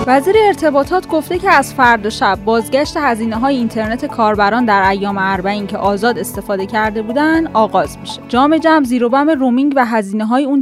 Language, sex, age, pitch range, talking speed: Persian, female, 10-29, 200-275 Hz, 160 wpm